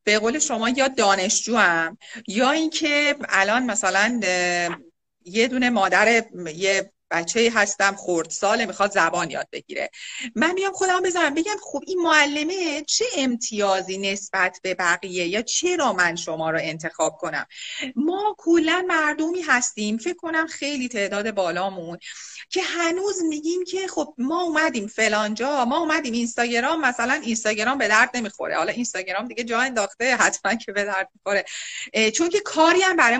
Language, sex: Persian, female